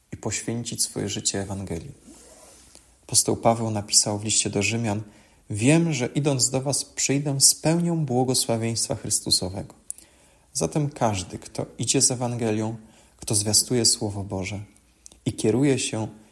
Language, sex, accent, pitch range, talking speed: Polish, male, native, 95-125 Hz, 125 wpm